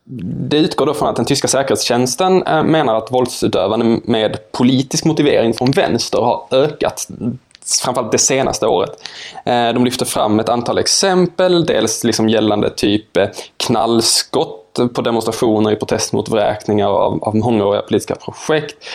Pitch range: 110-125 Hz